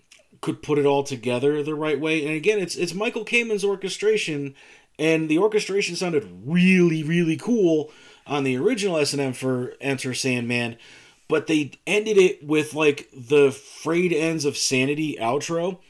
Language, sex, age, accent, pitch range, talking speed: English, male, 30-49, American, 135-180 Hz, 155 wpm